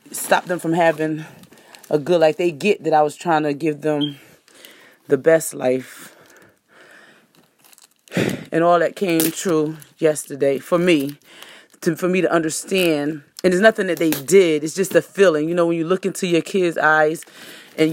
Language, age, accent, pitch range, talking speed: English, 30-49, American, 160-185 Hz, 170 wpm